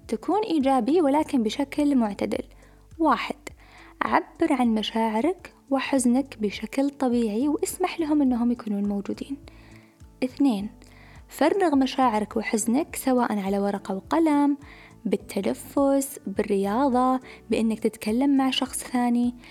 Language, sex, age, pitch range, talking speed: Arabic, female, 20-39, 215-290 Hz, 100 wpm